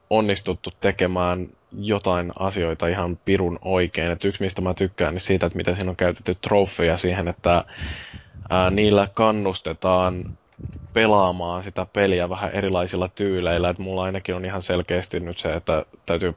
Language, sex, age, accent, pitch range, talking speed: Finnish, male, 20-39, native, 85-95 Hz, 150 wpm